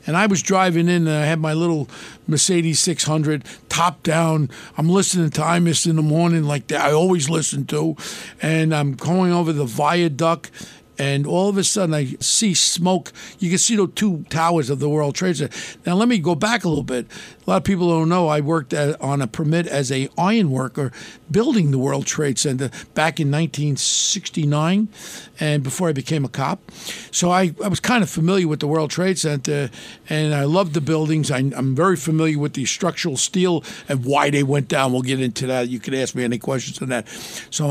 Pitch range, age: 145-175 Hz, 50-69